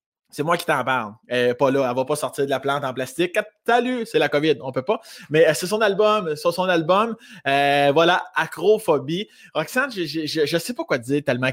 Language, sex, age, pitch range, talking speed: French, male, 20-39, 140-205 Hz, 240 wpm